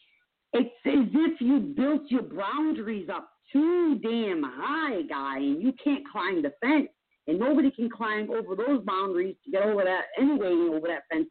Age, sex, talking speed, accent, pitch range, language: 50-69, female, 175 wpm, American, 195-300 Hz, English